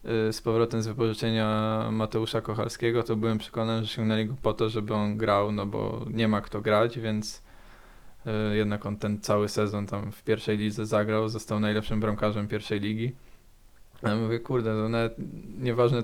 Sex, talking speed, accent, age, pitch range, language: male, 170 wpm, native, 20-39, 110-115 Hz, Polish